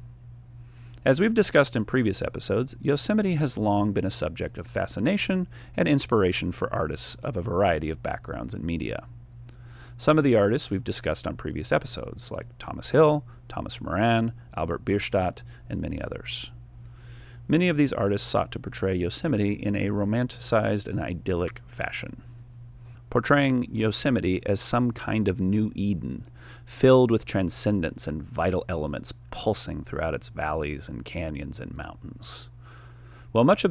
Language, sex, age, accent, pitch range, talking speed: English, male, 40-59, American, 100-125 Hz, 150 wpm